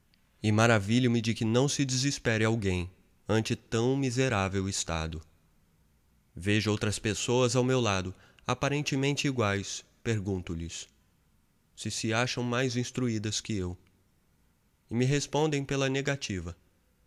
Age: 20-39